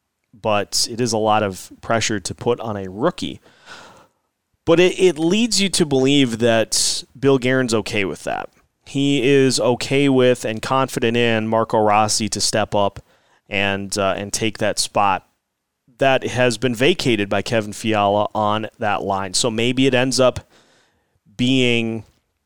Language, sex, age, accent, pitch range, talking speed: English, male, 30-49, American, 105-130 Hz, 160 wpm